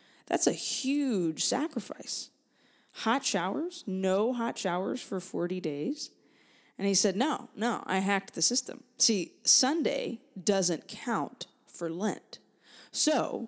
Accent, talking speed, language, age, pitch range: American, 125 wpm, English, 20-39, 170-230 Hz